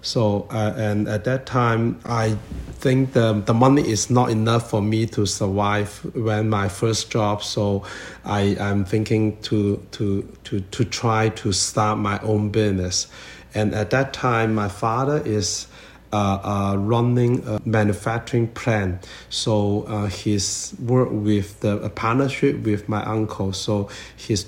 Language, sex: English, male